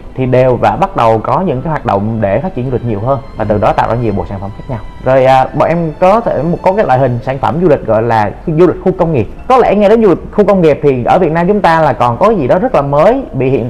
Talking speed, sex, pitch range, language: 325 wpm, male, 120-165 Hz, Vietnamese